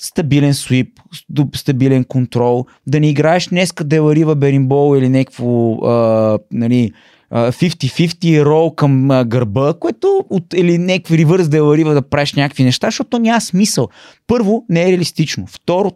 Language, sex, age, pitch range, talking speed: Bulgarian, male, 20-39, 125-170 Hz, 130 wpm